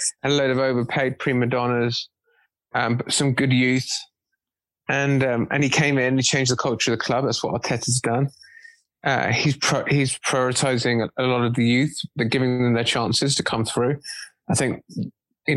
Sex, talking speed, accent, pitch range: male, 195 wpm, British, 125-150 Hz